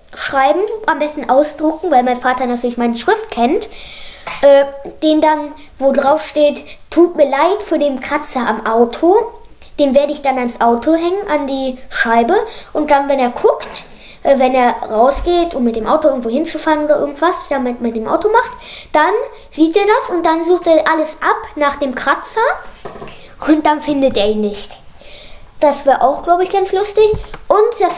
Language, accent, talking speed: German, German, 180 wpm